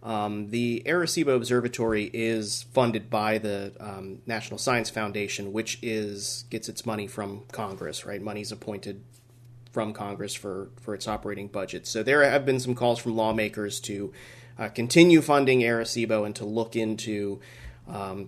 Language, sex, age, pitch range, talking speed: English, male, 30-49, 110-130 Hz, 155 wpm